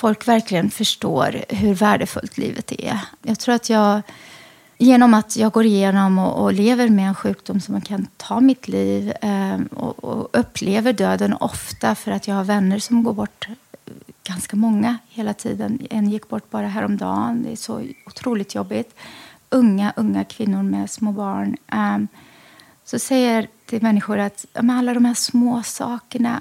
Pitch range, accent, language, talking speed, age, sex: 210-250 Hz, native, Swedish, 160 wpm, 30-49, female